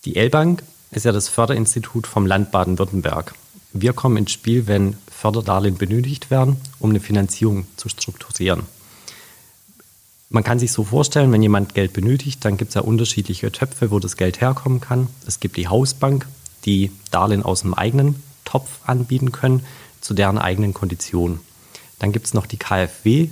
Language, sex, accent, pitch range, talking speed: German, male, German, 100-130 Hz, 165 wpm